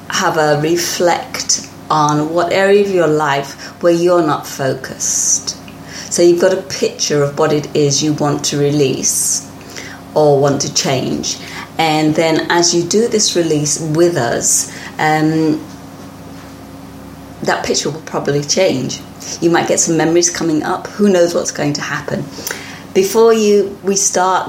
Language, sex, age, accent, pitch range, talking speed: English, female, 30-49, British, 145-180 Hz, 155 wpm